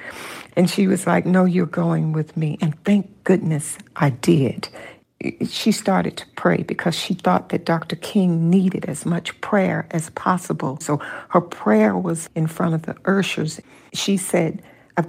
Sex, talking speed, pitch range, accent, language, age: female, 165 wpm, 165-185 Hz, American, English, 60-79